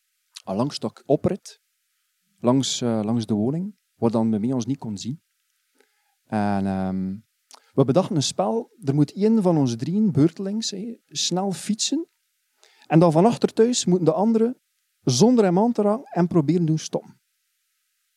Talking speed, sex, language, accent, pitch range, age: 160 wpm, male, Dutch, Dutch, 135-205 Hz, 40-59